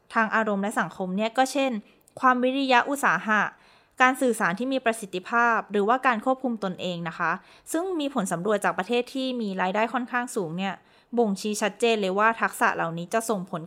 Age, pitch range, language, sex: 20-39, 190-250 Hz, Thai, female